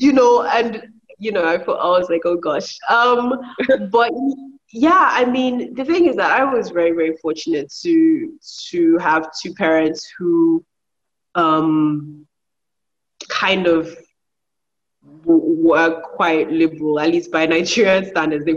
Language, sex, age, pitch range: English, female, 20-39, 160-225 Hz